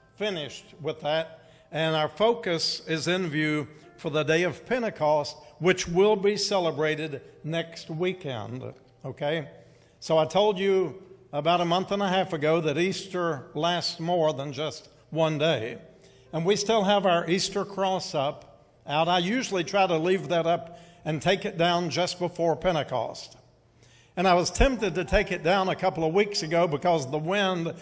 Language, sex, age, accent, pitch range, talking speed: English, male, 60-79, American, 150-190 Hz, 170 wpm